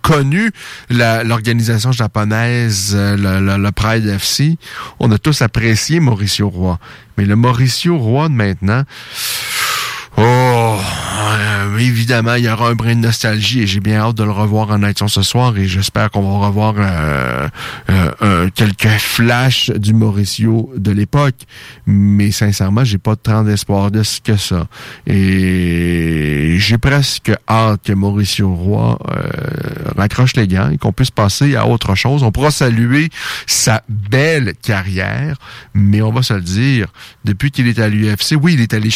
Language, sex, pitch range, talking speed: French, male, 100-125 Hz, 165 wpm